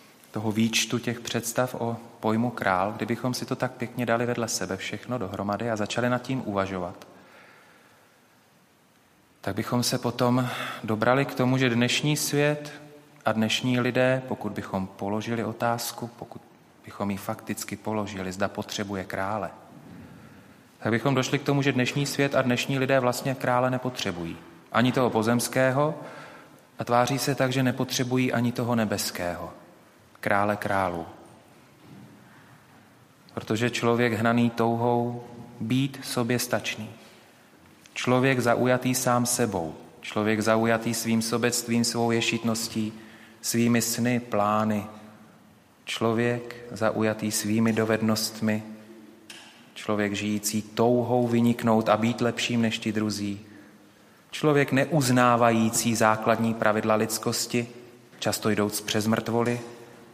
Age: 30-49